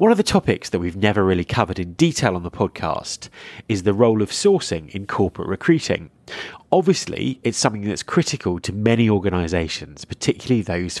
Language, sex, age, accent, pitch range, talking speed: English, male, 30-49, British, 90-130 Hz, 175 wpm